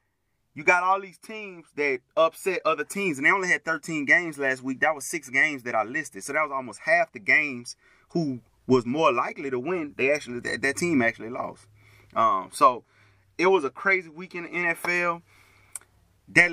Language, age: English, 30-49